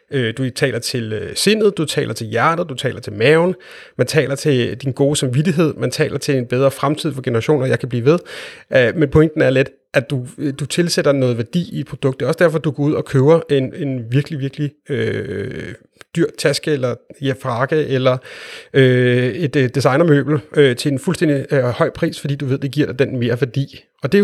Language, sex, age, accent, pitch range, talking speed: Danish, male, 30-49, native, 130-170 Hz, 210 wpm